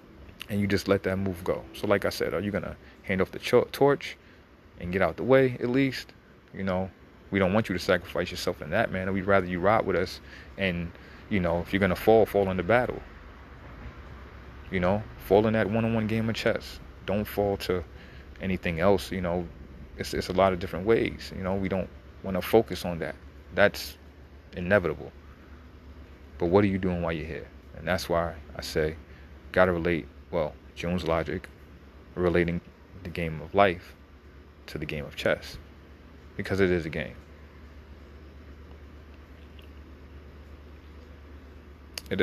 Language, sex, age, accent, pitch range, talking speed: English, male, 30-49, American, 75-95 Hz, 175 wpm